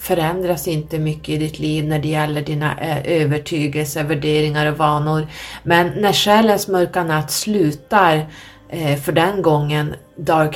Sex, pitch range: female, 150-180 Hz